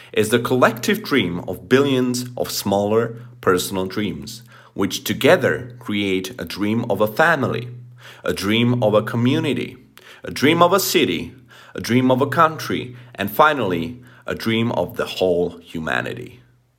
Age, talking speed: 40-59, 145 wpm